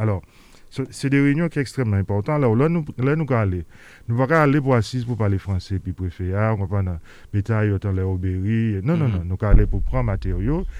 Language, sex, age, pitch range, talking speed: French, male, 40-59, 100-130 Hz, 235 wpm